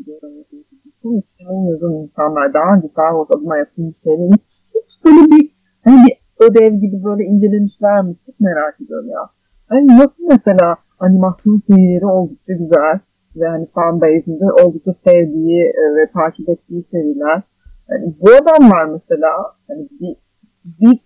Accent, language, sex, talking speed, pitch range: native, Turkish, female, 130 wpm, 165-245 Hz